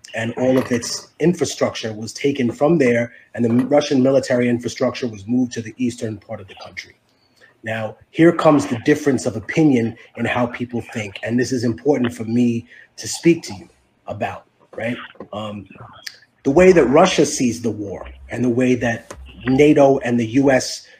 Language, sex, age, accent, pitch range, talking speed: English, male, 30-49, American, 120-140 Hz, 175 wpm